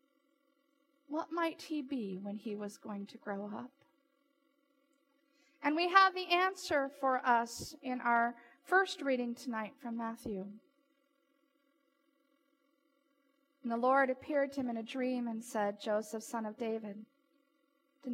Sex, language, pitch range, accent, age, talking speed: female, English, 255-285 Hz, American, 40-59, 135 wpm